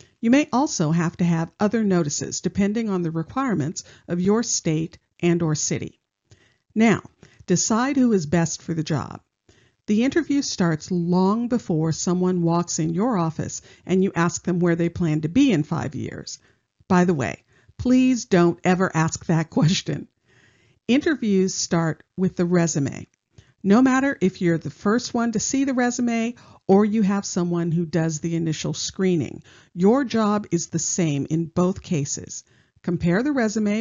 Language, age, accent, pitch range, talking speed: English, 50-69, American, 165-210 Hz, 165 wpm